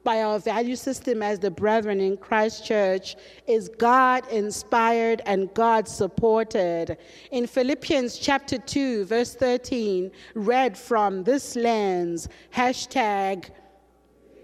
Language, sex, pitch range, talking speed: English, female, 210-280 Hz, 110 wpm